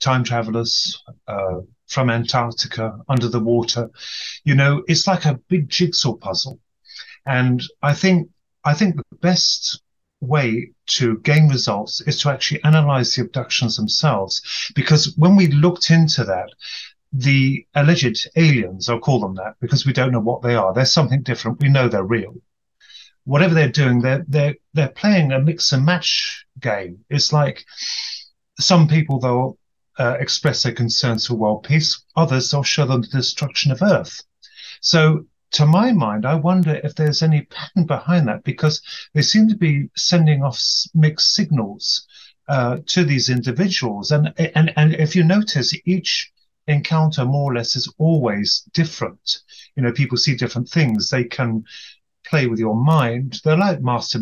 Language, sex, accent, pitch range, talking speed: English, male, British, 120-160 Hz, 160 wpm